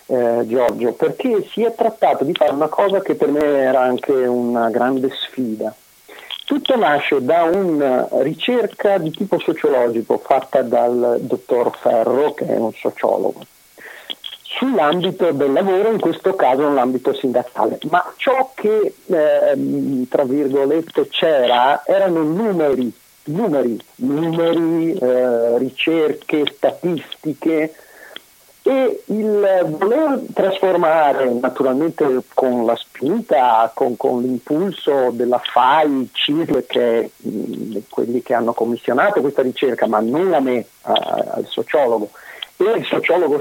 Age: 50-69